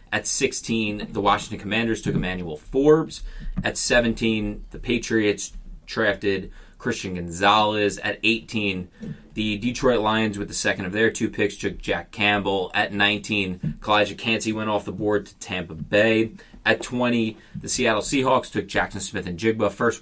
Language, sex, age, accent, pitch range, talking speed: English, male, 30-49, American, 100-115 Hz, 155 wpm